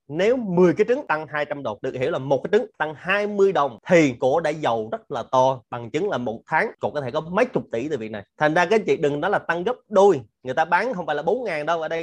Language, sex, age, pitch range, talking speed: Vietnamese, male, 20-39, 130-165 Hz, 300 wpm